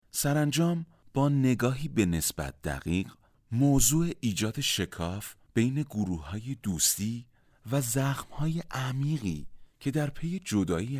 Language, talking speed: Persian, 110 wpm